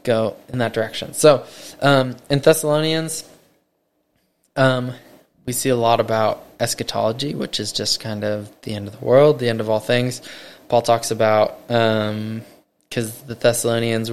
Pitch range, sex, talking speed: 110-120 Hz, male, 155 wpm